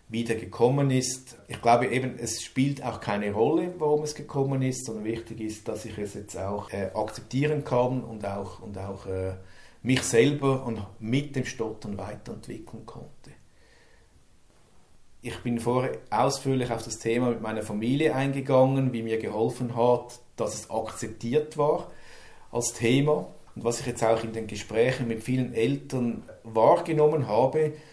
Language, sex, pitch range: German, male, 115-135 Hz